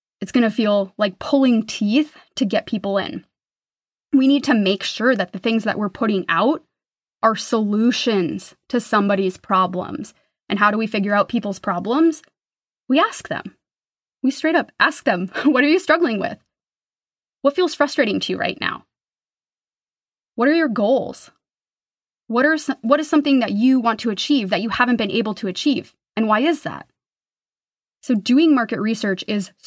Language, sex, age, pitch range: English, female, 20-39, 200-260 Hz